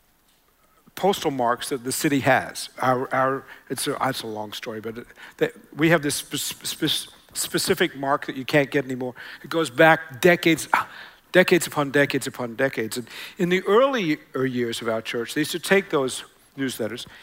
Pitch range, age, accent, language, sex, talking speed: 135-175 Hz, 60-79, American, English, male, 180 wpm